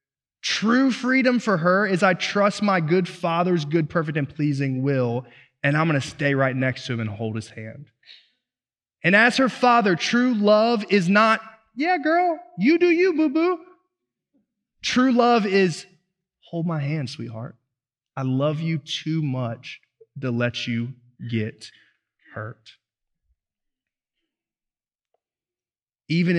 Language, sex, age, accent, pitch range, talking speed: English, male, 20-39, American, 125-165 Hz, 135 wpm